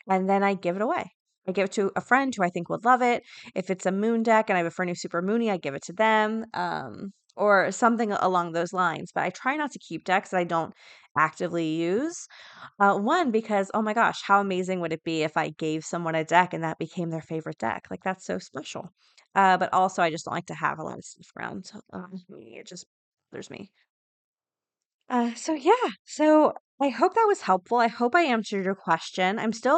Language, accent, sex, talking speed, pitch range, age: English, American, female, 235 wpm, 185-240 Hz, 20-39